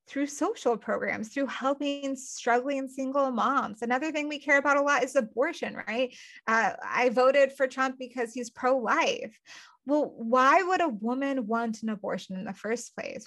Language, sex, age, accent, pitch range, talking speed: English, female, 20-39, American, 230-275 Hz, 170 wpm